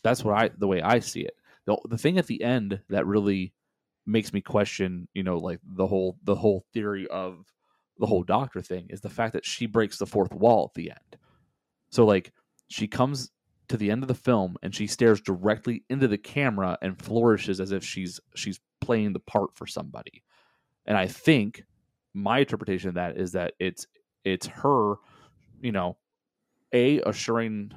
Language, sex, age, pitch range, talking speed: English, male, 30-49, 95-115 Hz, 190 wpm